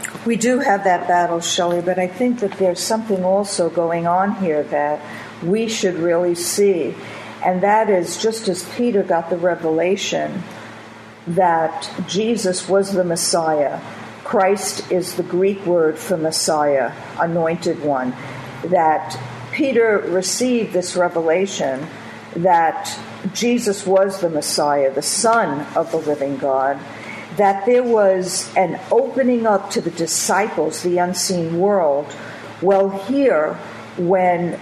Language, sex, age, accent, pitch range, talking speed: English, female, 50-69, American, 165-210 Hz, 130 wpm